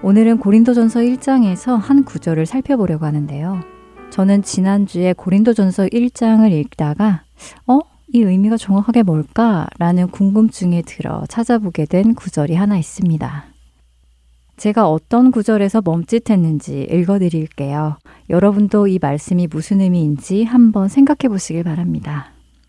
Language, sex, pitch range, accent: Korean, female, 155-220 Hz, native